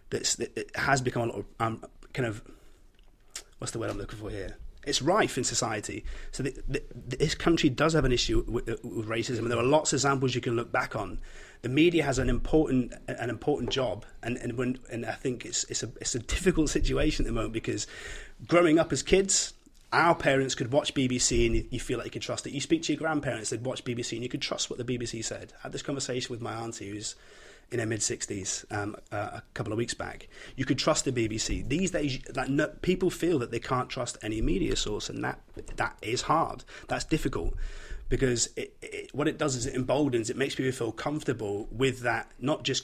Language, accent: English, British